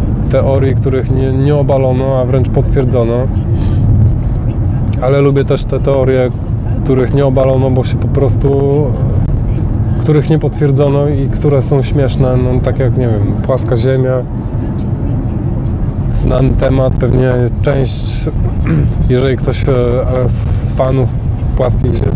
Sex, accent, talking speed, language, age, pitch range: male, native, 115 wpm, Polish, 20-39, 110-130 Hz